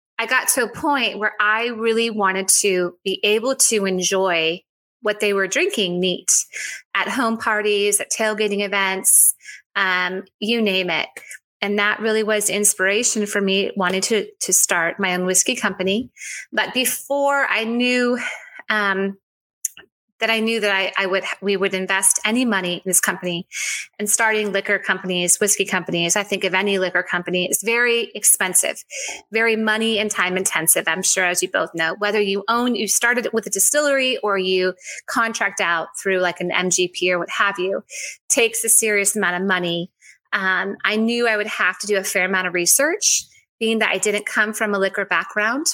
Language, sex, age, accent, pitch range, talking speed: English, female, 30-49, American, 190-220 Hz, 180 wpm